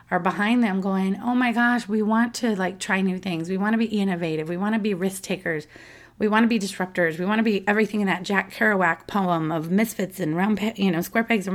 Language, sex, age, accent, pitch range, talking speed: English, female, 30-49, American, 170-215 Hz, 245 wpm